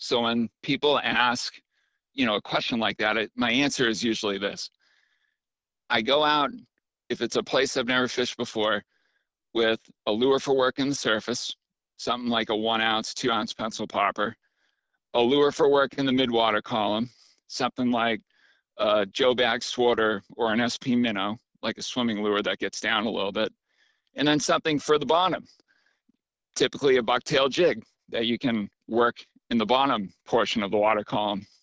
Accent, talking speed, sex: American, 175 wpm, male